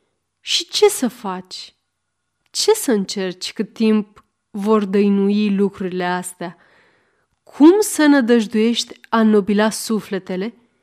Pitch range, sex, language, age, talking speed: 195-250 Hz, female, Romanian, 30-49, 105 wpm